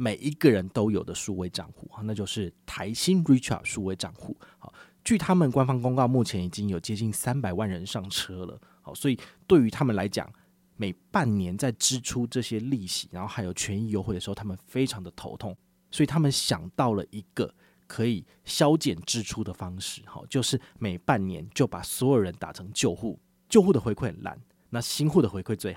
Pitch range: 95-140 Hz